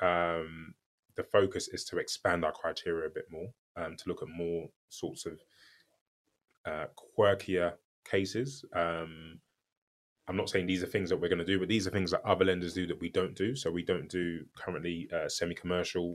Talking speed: 195 wpm